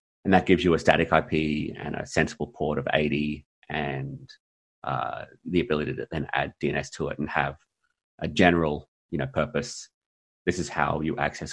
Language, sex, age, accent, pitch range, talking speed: English, male, 30-49, Australian, 75-85 Hz, 180 wpm